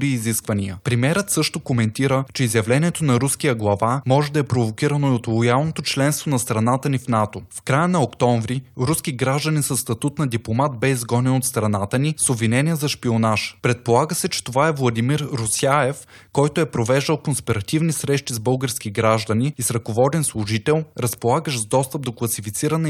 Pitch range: 115-145 Hz